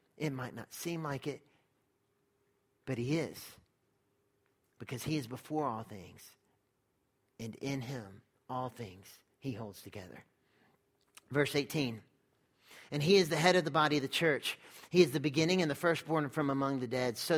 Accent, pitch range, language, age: American, 140-175 Hz, English, 40-59